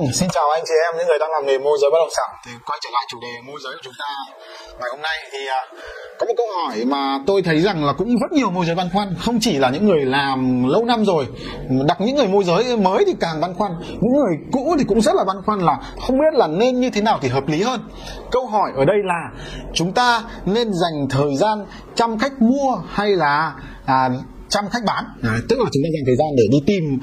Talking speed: 260 wpm